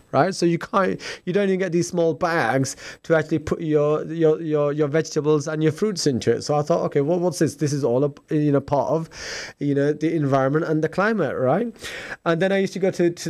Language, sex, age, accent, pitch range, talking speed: English, male, 20-39, British, 145-175 Hz, 250 wpm